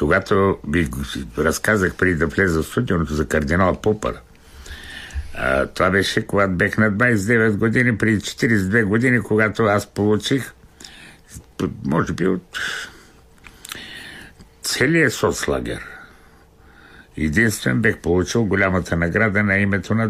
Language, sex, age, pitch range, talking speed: Bulgarian, male, 60-79, 75-110 Hz, 110 wpm